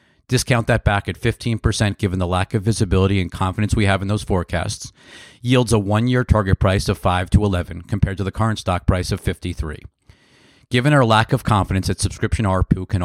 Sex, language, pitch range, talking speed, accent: male, English, 95-110 Hz, 200 wpm, American